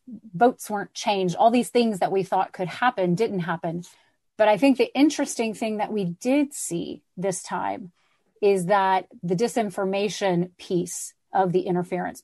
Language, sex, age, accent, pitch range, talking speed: English, female, 30-49, American, 185-215 Hz, 160 wpm